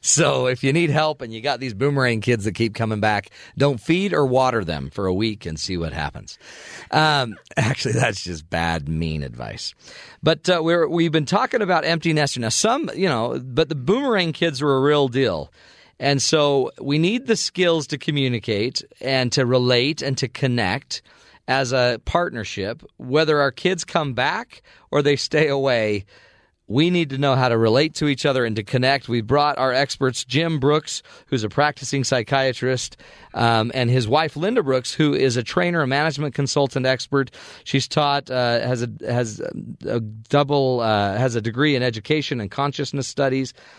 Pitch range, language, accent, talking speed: 115-150 Hz, English, American, 185 wpm